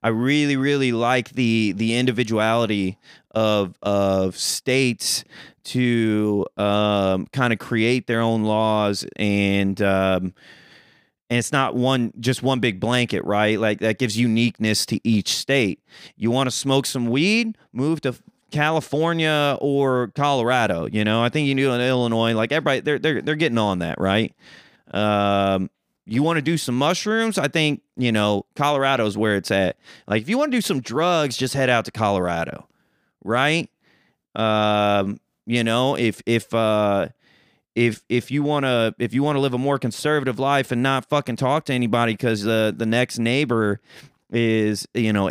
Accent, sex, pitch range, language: American, male, 105-135 Hz, English